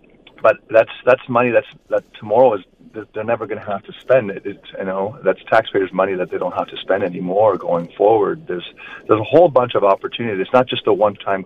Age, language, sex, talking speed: 40-59, English, male, 230 wpm